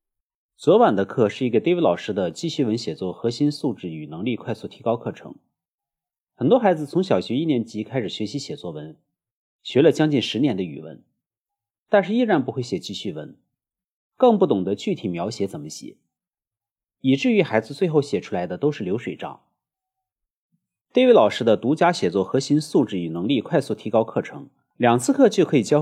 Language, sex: Chinese, male